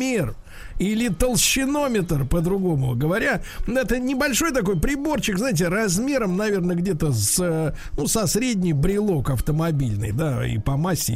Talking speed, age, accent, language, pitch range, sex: 110 wpm, 50-69, native, Russian, 150-210 Hz, male